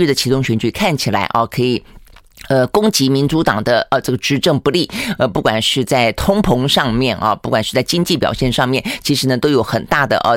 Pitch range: 120-155 Hz